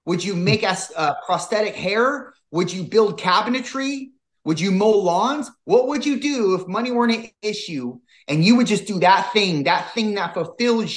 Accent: American